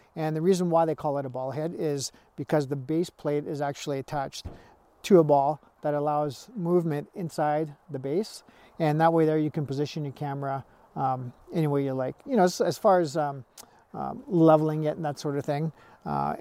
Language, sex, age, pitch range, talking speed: English, male, 50-69, 140-170 Hz, 210 wpm